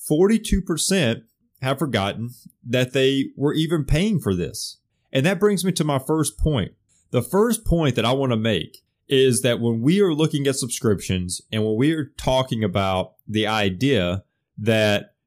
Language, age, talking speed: English, 30-49, 165 wpm